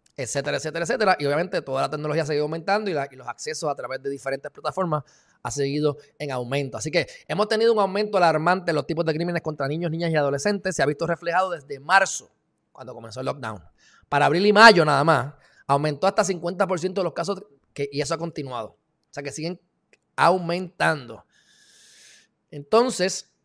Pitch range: 140-185 Hz